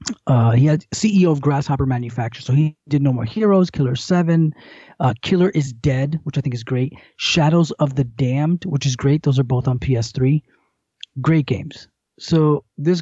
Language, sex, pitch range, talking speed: English, male, 135-165 Hz, 180 wpm